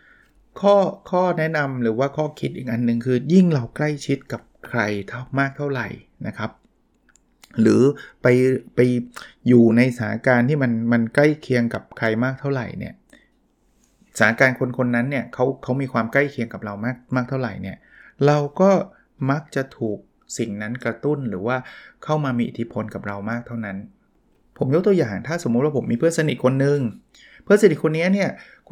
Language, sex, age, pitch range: Thai, male, 20-39, 120-155 Hz